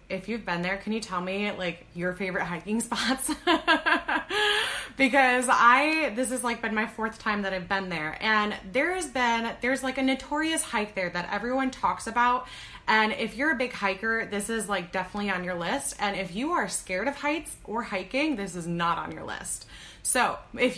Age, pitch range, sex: 20-39, 195-275 Hz, female